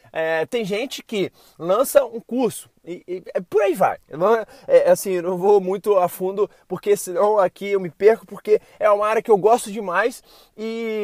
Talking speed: 200 wpm